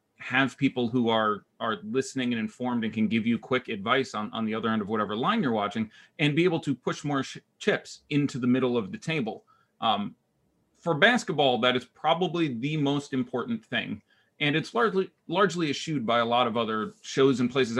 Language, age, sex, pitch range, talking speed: English, 30-49, male, 120-155 Hz, 200 wpm